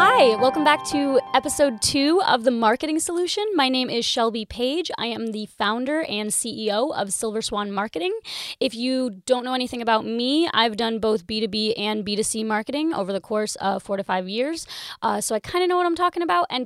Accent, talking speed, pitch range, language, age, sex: American, 210 wpm, 210-270 Hz, English, 20-39, female